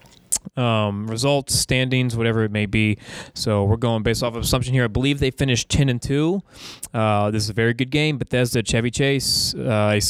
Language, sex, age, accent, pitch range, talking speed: English, male, 20-39, American, 110-130 Hz, 200 wpm